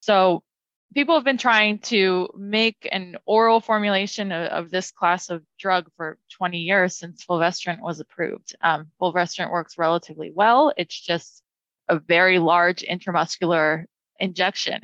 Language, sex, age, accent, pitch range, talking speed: English, female, 20-39, American, 175-220 Hz, 140 wpm